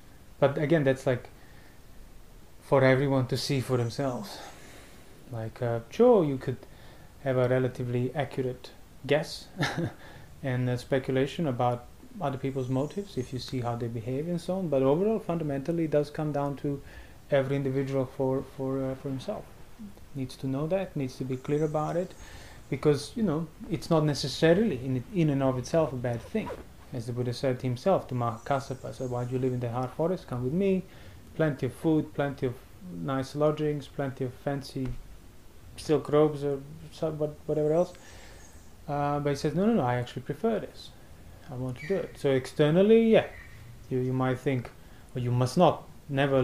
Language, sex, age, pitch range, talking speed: English, male, 30-49, 125-150 Hz, 180 wpm